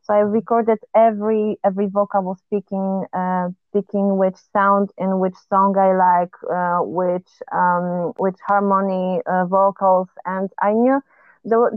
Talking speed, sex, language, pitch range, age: 140 wpm, female, Greek, 180-210 Hz, 20-39